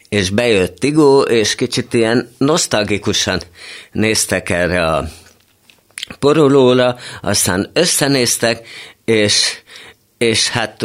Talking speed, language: 90 wpm, Hungarian